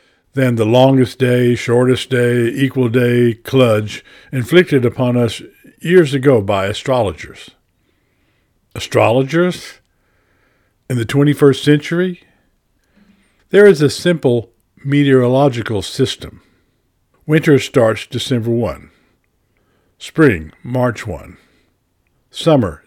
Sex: male